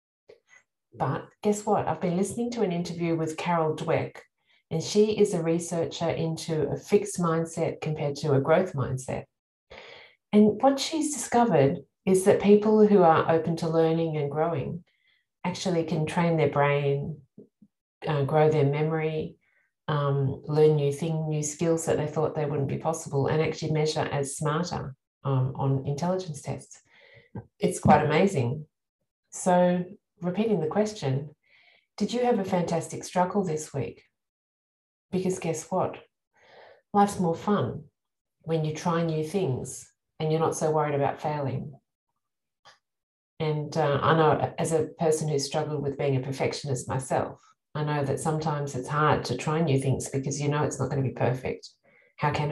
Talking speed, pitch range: 160 wpm, 145-180 Hz